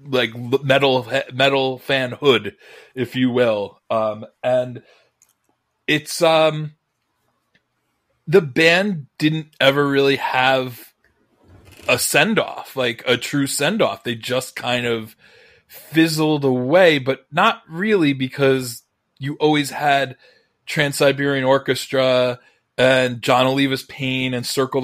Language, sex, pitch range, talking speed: English, male, 125-150 Hz, 115 wpm